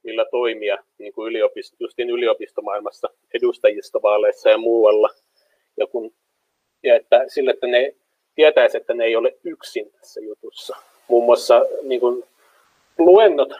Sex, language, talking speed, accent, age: male, Finnish, 130 wpm, native, 30-49